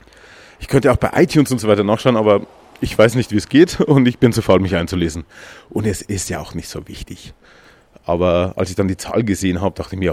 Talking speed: 245 wpm